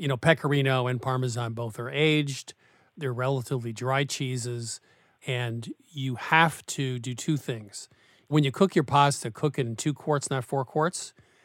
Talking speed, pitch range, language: 170 wpm, 120-150 Hz, English